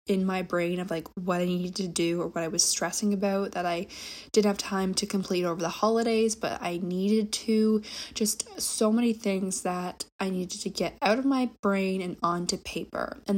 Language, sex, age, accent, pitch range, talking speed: English, female, 20-39, American, 175-210 Hz, 210 wpm